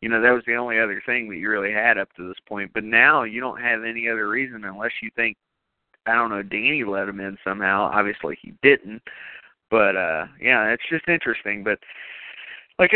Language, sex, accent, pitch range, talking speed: English, male, American, 105-125 Hz, 215 wpm